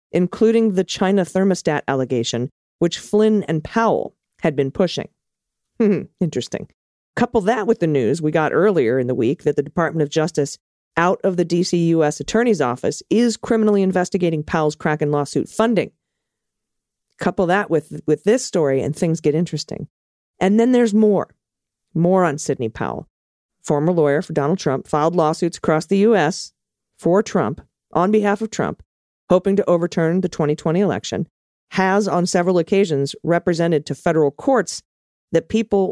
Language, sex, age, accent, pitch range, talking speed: English, female, 40-59, American, 150-195 Hz, 155 wpm